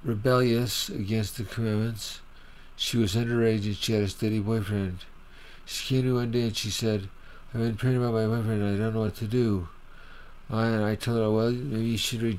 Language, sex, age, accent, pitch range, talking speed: English, male, 50-69, American, 95-110 Hz, 220 wpm